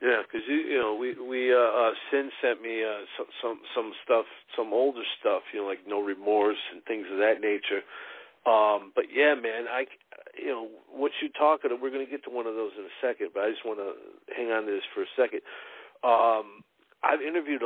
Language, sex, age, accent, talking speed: English, male, 50-69, American, 230 wpm